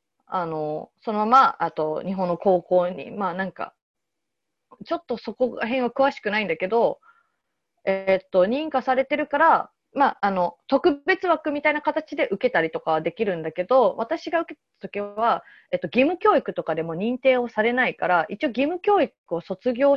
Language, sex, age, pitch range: Japanese, female, 30-49, 180-275 Hz